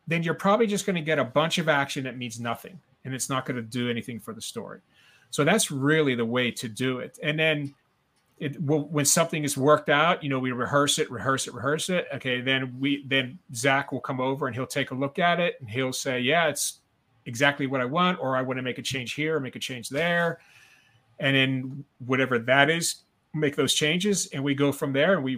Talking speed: 240 wpm